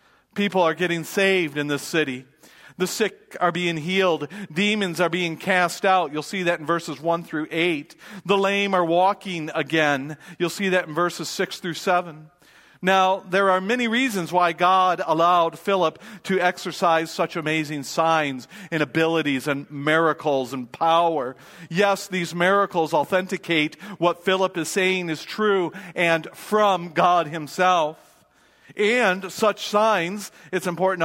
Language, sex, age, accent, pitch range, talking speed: English, male, 40-59, American, 160-200 Hz, 150 wpm